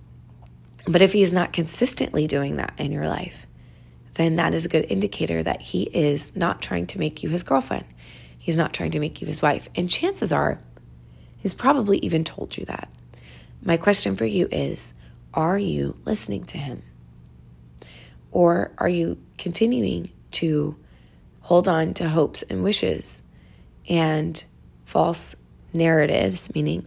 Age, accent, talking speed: 20-39, American, 155 wpm